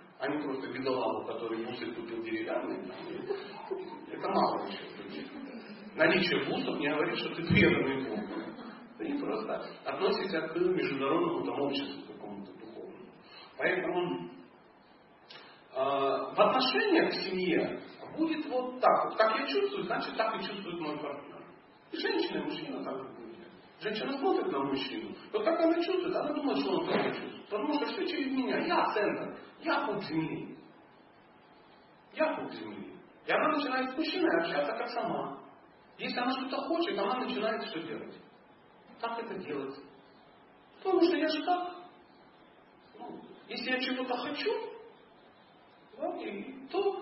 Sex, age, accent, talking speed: male, 40-59, native, 140 wpm